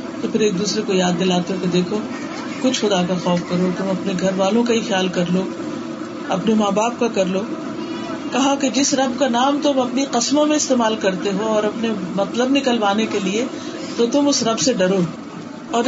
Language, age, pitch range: Urdu, 40-59, 210-295 Hz